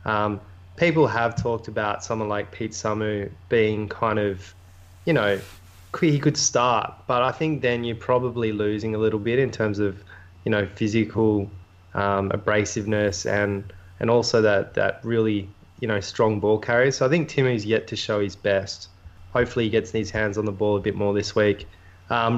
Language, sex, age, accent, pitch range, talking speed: English, male, 20-39, Australian, 100-120 Hz, 185 wpm